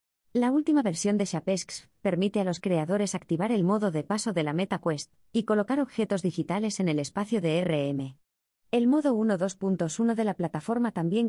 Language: Spanish